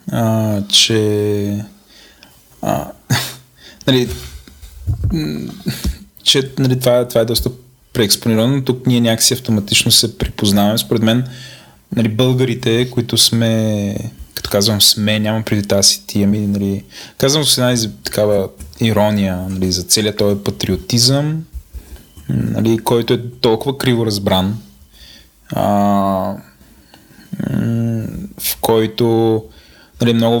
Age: 20-39